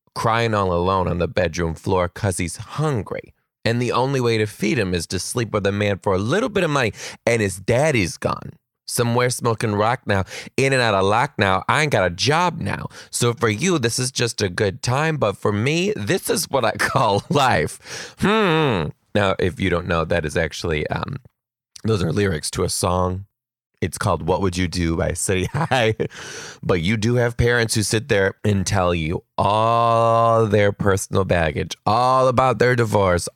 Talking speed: 200 wpm